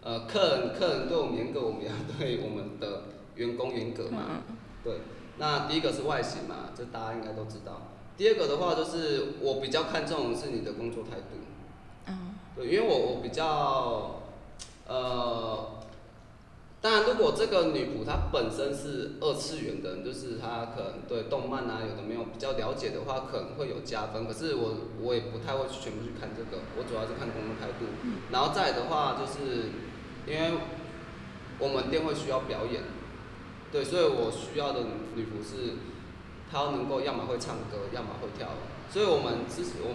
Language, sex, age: Chinese, male, 20-39